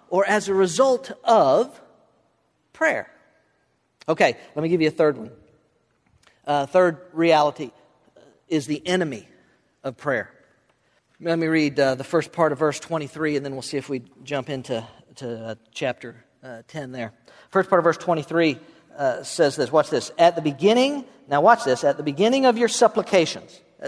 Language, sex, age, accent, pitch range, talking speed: English, male, 50-69, American, 165-220 Hz, 170 wpm